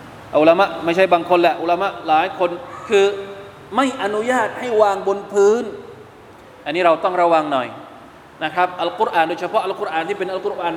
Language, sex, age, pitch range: Thai, male, 20-39, 155-210 Hz